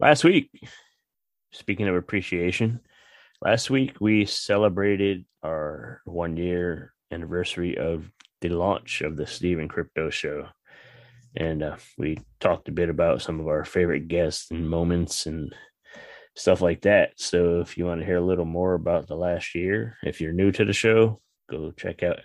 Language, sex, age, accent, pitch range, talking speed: English, male, 20-39, American, 85-100 Hz, 160 wpm